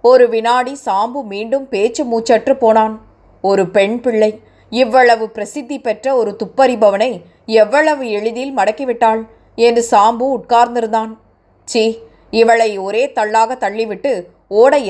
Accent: native